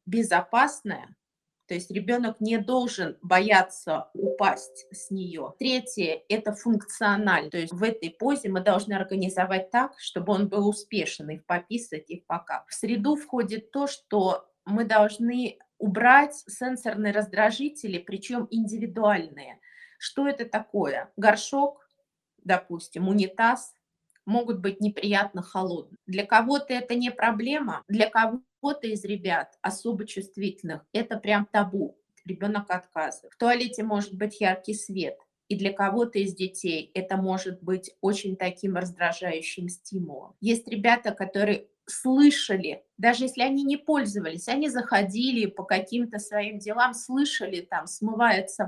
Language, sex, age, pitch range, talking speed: Russian, female, 20-39, 190-240 Hz, 130 wpm